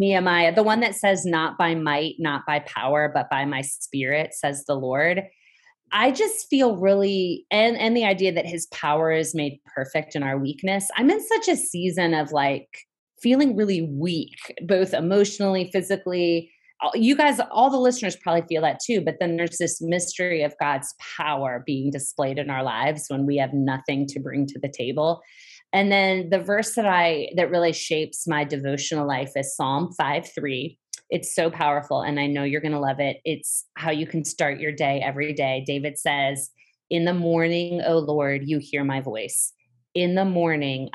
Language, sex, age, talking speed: English, female, 20-39, 190 wpm